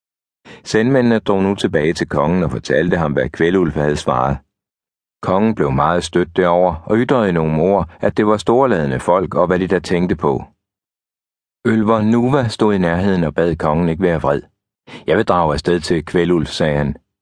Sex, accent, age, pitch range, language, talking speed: male, native, 60-79, 75-105 Hz, Danish, 180 wpm